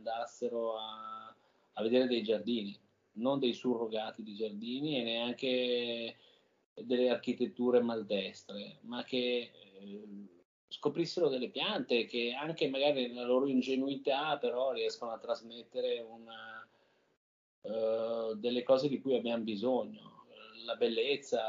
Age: 30-49